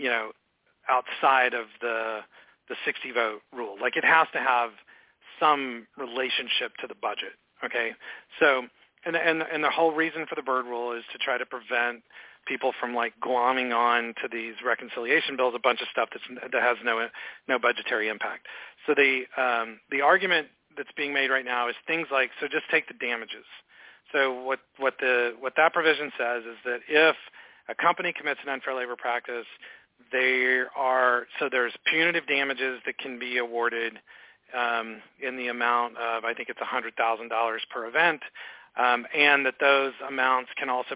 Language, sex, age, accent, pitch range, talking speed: English, male, 40-59, American, 120-135 Hz, 180 wpm